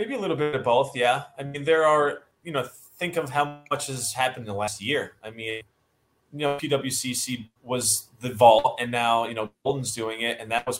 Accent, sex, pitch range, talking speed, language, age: American, male, 110-135 Hz, 230 wpm, English, 20-39